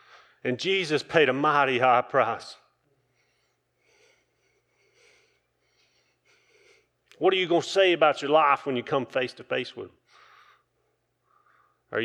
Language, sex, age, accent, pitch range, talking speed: English, male, 40-59, American, 140-175 Hz, 125 wpm